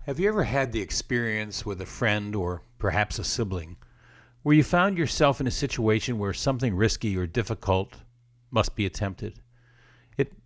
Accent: American